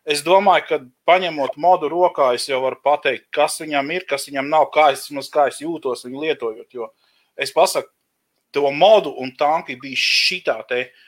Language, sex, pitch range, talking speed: English, male, 135-185 Hz, 170 wpm